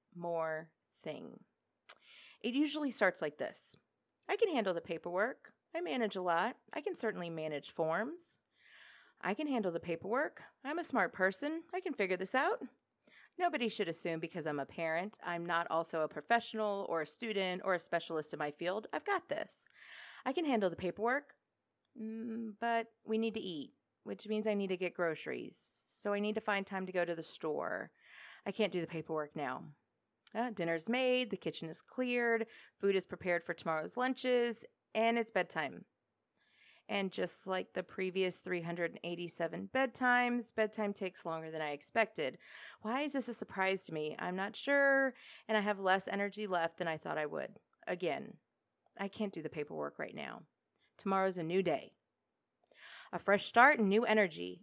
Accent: American